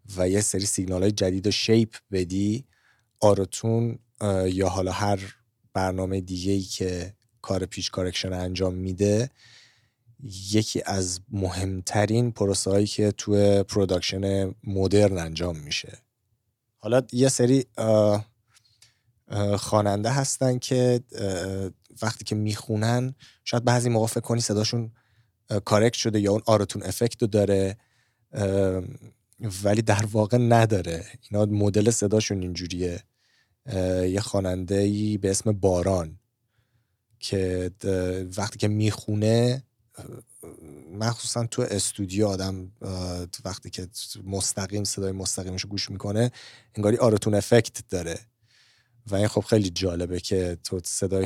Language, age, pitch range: Persian, 30-49, 95-115 Hz